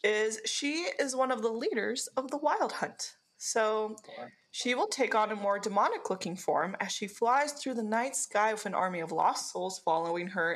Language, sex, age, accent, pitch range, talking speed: English, female, 20-39, American, 185-265 Hz, 200 wpm